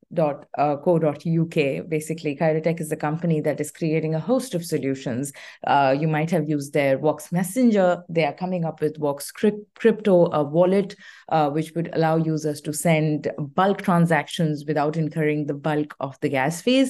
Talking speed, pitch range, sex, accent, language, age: 170 wpm, 150-185 Hz, female, Indian, English, 30-49